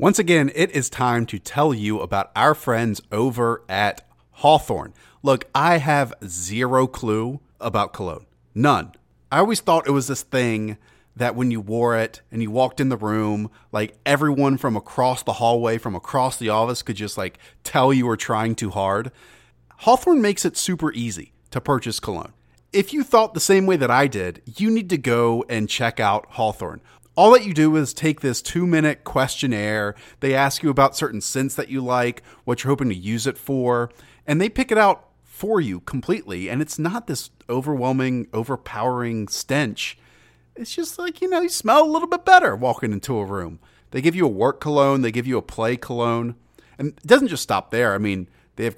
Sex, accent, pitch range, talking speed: male, American, 110-150 Hz, 200 wpm